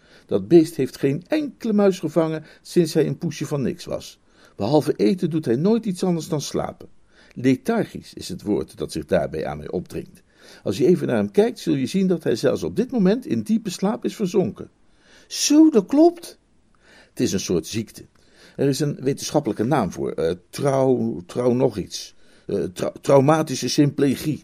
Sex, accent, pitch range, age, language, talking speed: male, Dutch, 130-195 Hz, 60-79, Dutch, 185 wpm